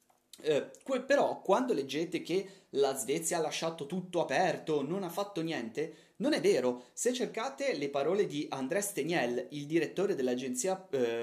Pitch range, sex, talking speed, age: 140-185 Hz, male, 155 wpm, 30-49